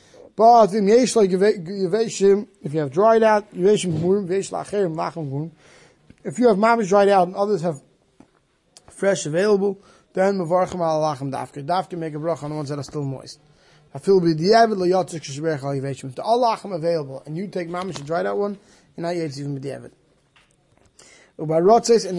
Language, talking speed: English, 170 wpm